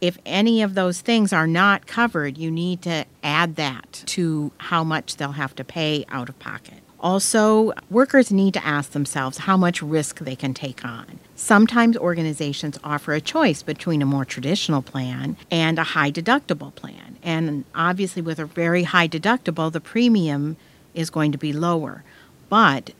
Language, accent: English, American